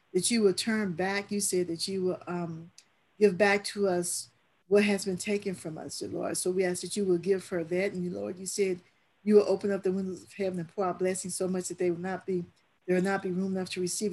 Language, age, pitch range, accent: English, 50-69, 180-200 Hz, American